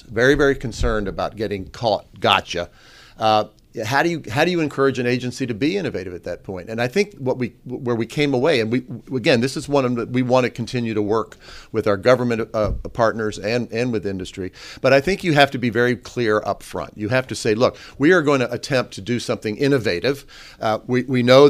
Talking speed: 235 wpm